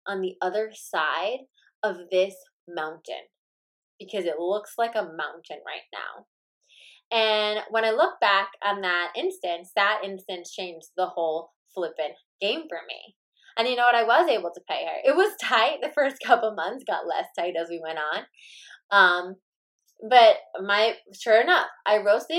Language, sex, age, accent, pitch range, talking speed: English, female, 20-39, American, 185-240 Hz, 170 wpm